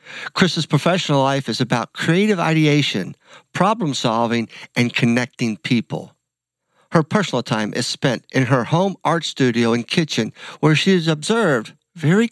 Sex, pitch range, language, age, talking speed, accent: male, 125-170 Hz, English, 50-69, 140 wpm, American